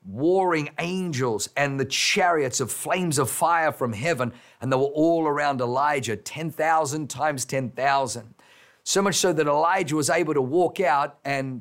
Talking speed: 160 wpm